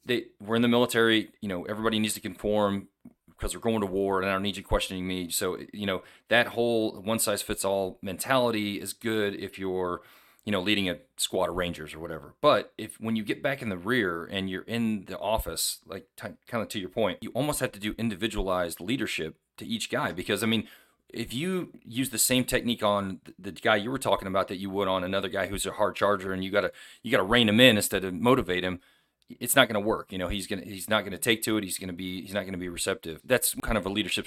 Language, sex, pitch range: English, male, 95-115 Hz